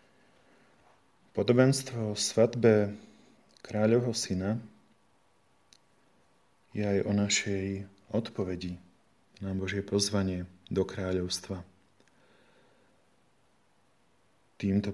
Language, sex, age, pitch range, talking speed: Slovak, male, 30-49, 100-110 Hz, 60 wpm